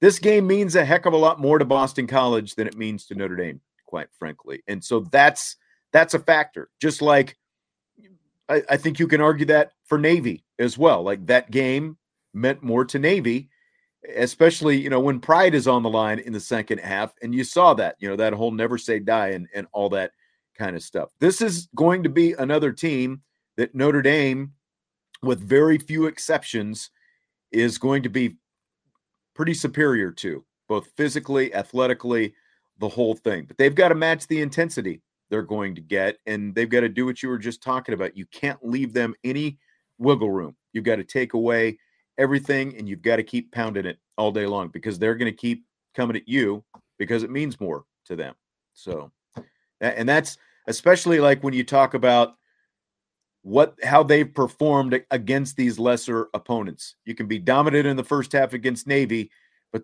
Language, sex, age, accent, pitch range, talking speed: English, male, 40-59, American, 115-145 Hz, 190 wpm